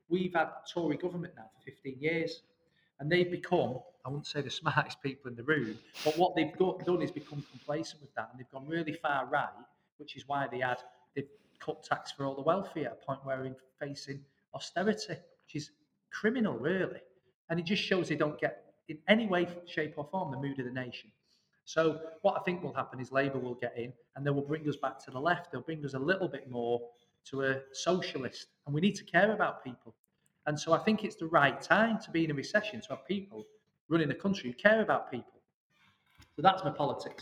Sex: male